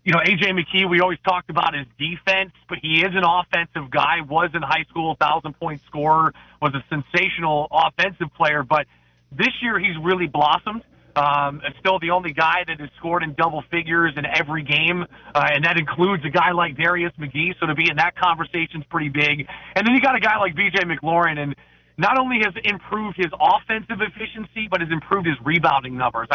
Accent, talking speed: American, 205 wpm